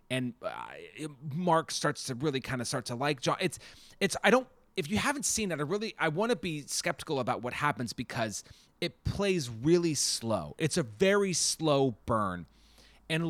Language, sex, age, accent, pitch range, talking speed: English, male, 30-49, American, 115-165 Hz, 190 wpm